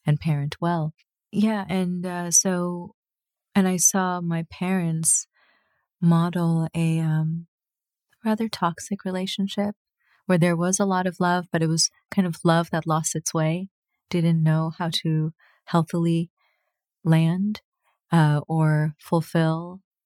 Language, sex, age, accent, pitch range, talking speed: English, female, 30-49, American, 150-180 Hz, 130 wpm